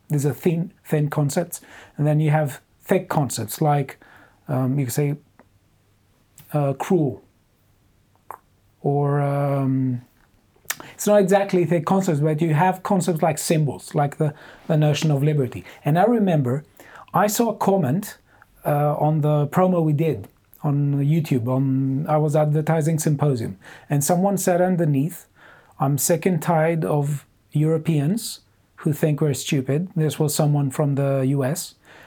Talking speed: 140 wpm